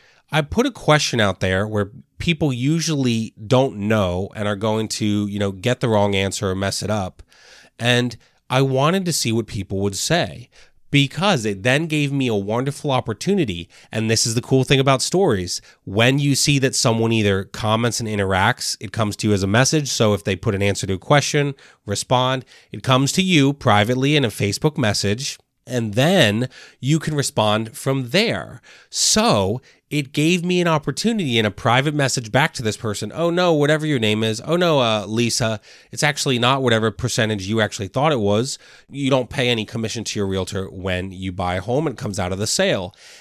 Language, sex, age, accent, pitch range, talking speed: English, male, 30-49, American, 105-145 Hz, 205 wpm